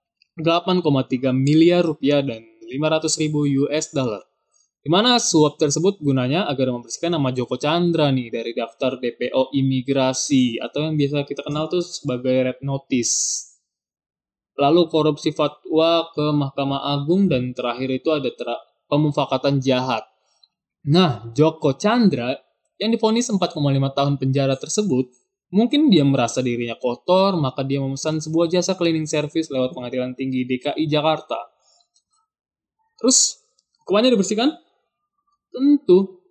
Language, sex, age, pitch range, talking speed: Indonesian, male, 20-39, 130-175 Hz, 120 wpm